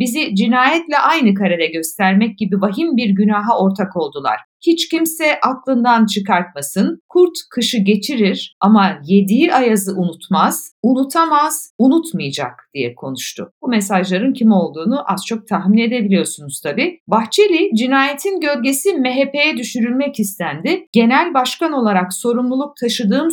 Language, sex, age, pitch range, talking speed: Turkish, female, 60-79, 195-275 Hz, 120 wpm